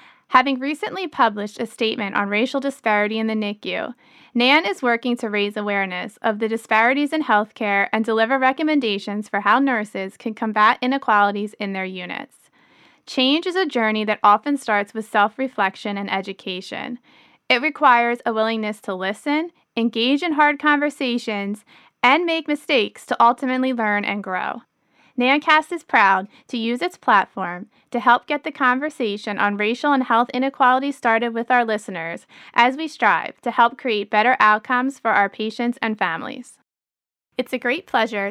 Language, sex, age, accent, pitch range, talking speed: English, female, 30-49, American, 210-265 Hz, 160 wpm